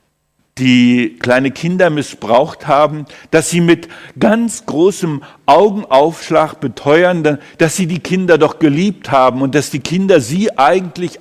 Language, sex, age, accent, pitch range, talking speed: German, male, 60-79, German, 120-165 Hz, 135 wpm